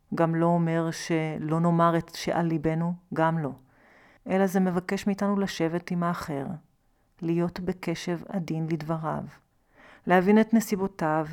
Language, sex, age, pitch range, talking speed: Hebrew, female, 40-59, 160-195 Hz, 125 wpm